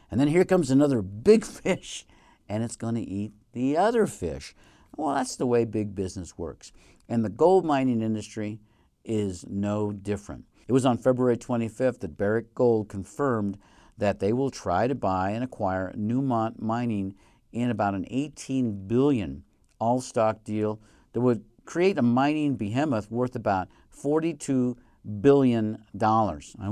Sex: male